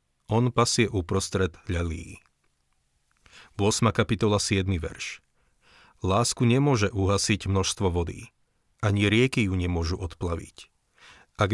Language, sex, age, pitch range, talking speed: Slovak, male, 40-59, 90-110 Hz, 105 wpm